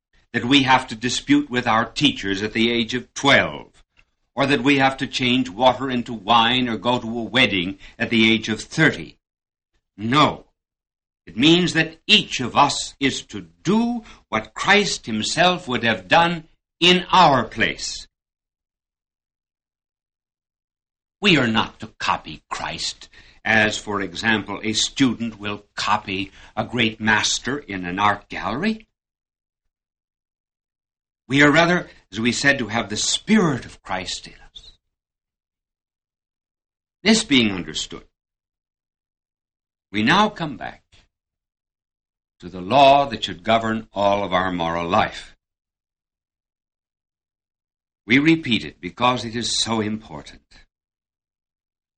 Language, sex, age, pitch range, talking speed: English, male, 60-79, 95-130 Hz, 130 wpm